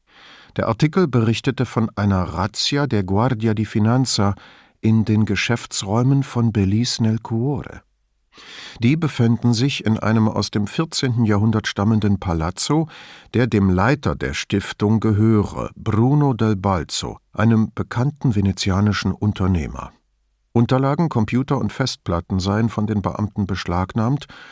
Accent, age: German, 50-69